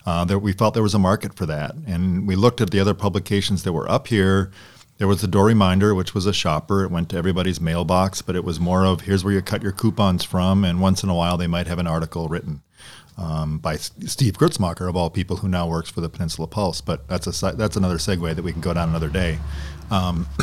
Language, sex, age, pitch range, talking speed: English, male, 40-59, 90-105 Hz, 255 wpm